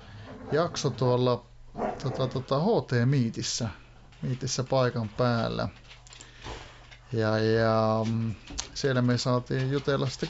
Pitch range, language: 120-130 Hz, Finnish